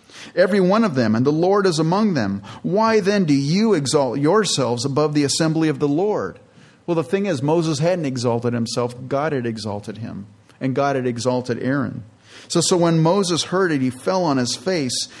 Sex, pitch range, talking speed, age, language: male, 115-145 Hz, 195 wpm, 40-59, English